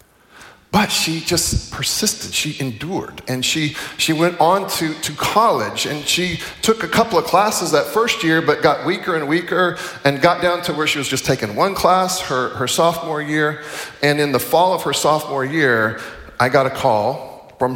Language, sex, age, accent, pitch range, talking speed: English, male, 40-59, American, 110-145 Hz, 195 wpm